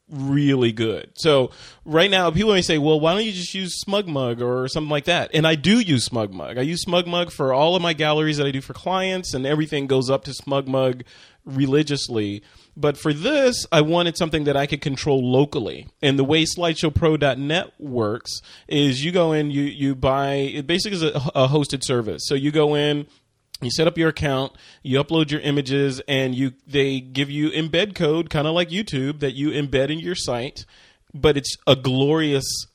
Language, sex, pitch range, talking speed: English, male, 135-160 Hz, 205 wpm